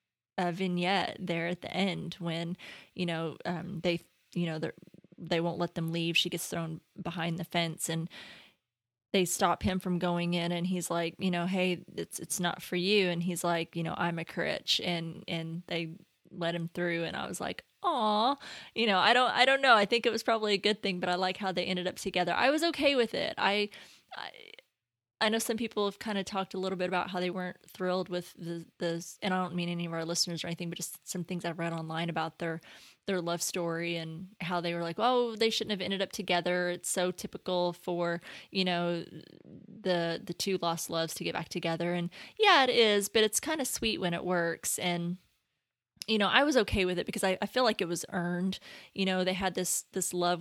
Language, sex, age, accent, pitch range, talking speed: English, female, 20-39, American, 170-185 Hz, 230 wpm